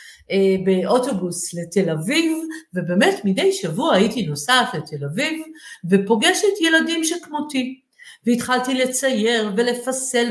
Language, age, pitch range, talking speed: Hebrew, 50-69, 195-265 Hz, 95 wpm